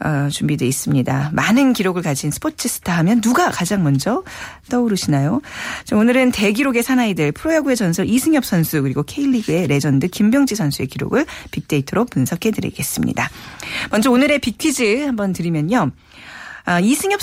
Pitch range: 150-250 Hz